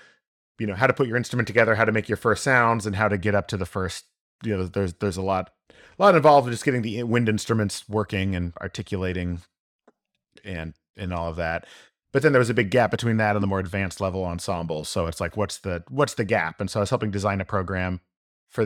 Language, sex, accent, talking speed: English, male, American, 245 wpm